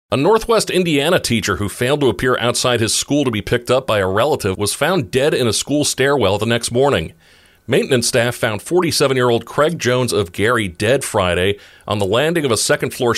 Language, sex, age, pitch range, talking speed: English, male, 40-59, 100-130 Hz, 200 wpm